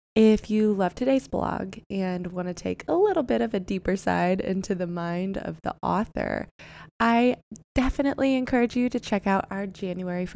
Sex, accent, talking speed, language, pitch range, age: female, American, 180 wpm, English, 180-235 Hz, 20-39